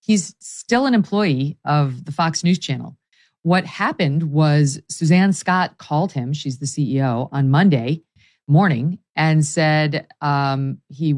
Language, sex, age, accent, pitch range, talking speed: English, female, 40-59, American, 140-175 Hz, 140 wpm